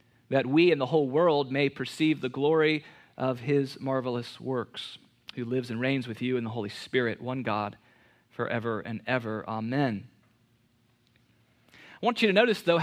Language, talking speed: English, 170 wpm